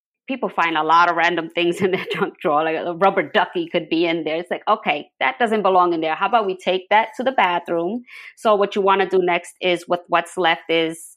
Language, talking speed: English, 255 wpm